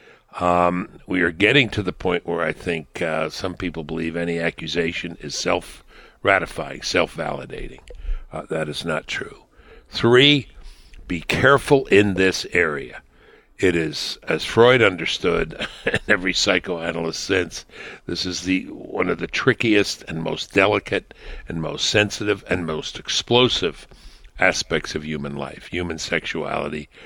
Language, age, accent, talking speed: English, 60-79, American, 140 wpm